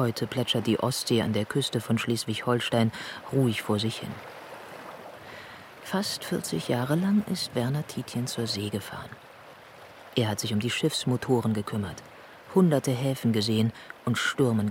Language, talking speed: German, 145 wpm